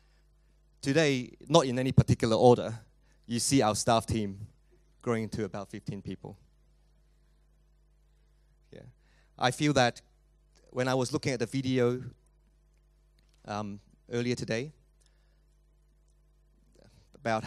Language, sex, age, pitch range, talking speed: English, male, 30-49, 110-150 Hz, 105 wpm